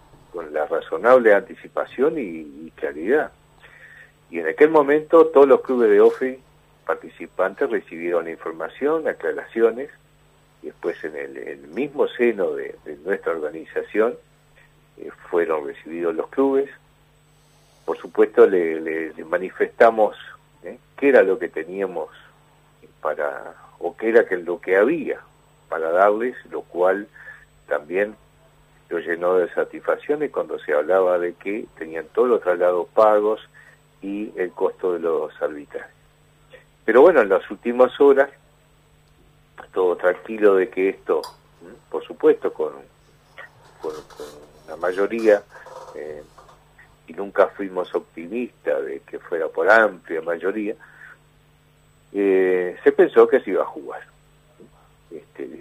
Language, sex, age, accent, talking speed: Spanish, male, 50-69, Argentinian, 130 wpm